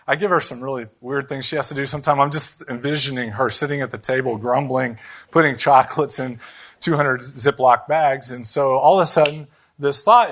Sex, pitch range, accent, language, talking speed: male, 130-175 Hz, American, English, 205 wpm